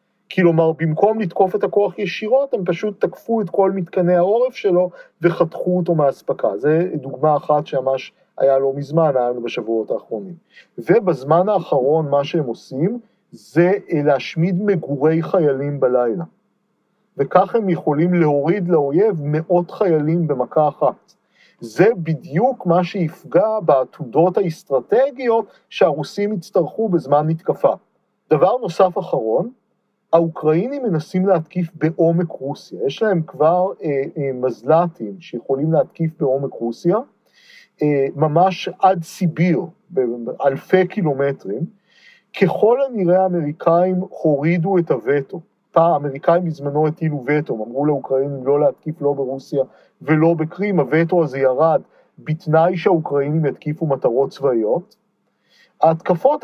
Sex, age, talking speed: male, 40-59, 115 wpm